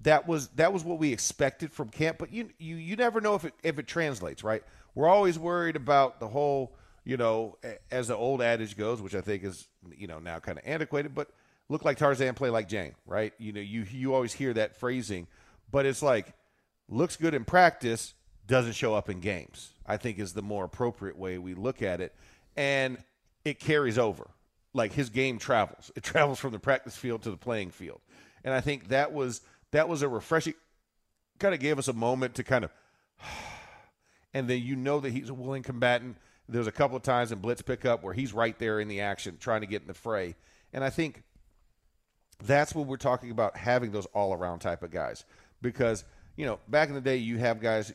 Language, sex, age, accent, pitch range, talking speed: English, male, 40-59, American, 105-135 Hz, 220 wpm